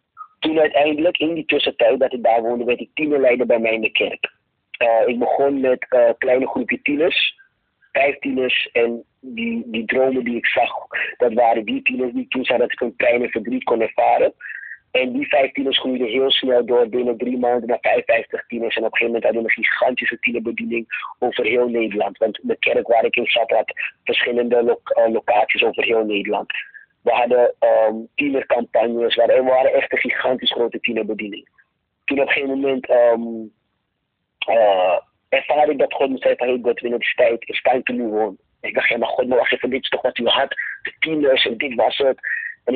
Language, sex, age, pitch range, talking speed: Dutch, male, 30-49, 120-175 Hz, 200 wpm